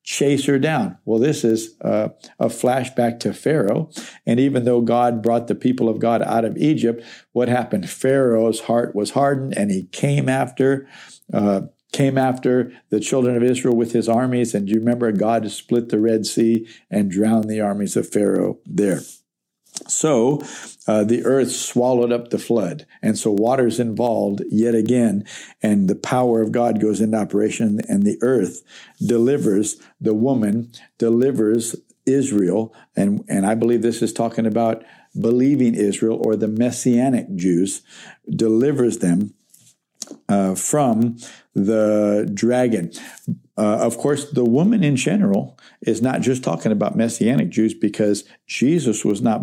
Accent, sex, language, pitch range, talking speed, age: American, male, English, 110-125 Hz, 150 wpm, 60-79